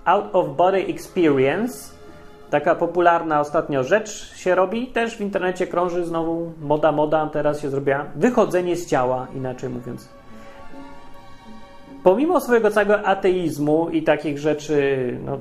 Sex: male